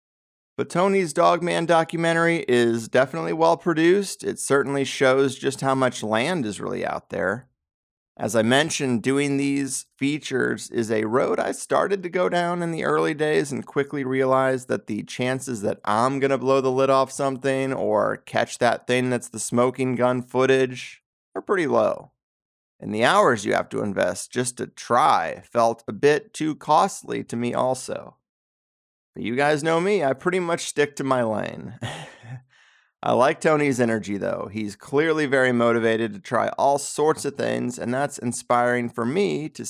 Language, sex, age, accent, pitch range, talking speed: English, male, 30-49, American, 125-165 Hz, 170 wpm